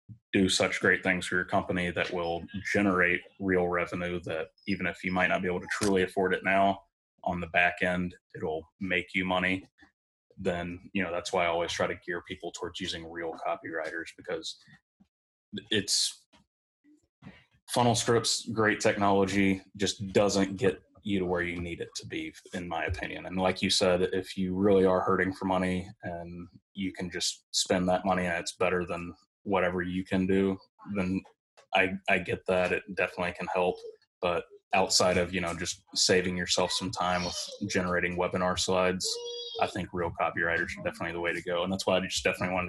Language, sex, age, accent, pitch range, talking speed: English, male, 20-39, American, 90-95 Hz, 185 wpm